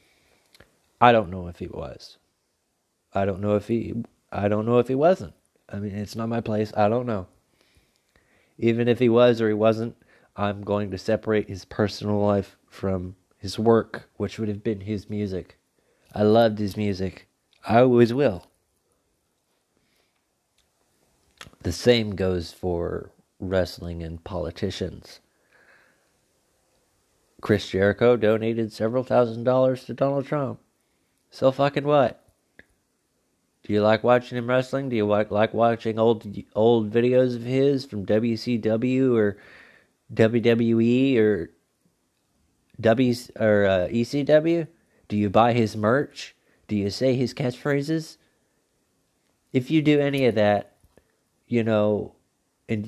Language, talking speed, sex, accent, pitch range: English, 135 wpm, male, American, 105-125 Hz